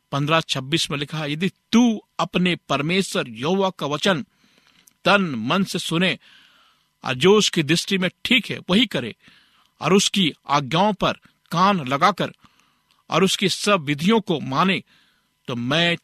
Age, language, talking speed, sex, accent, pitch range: 50-69, Hindi, 145 wpm, male, native, 135-180 Hz